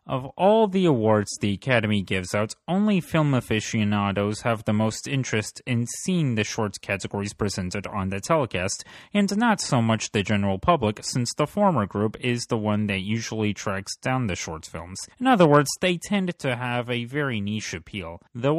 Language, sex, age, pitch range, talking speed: English, male, 30-49, 105-150 Hz, 185 wpm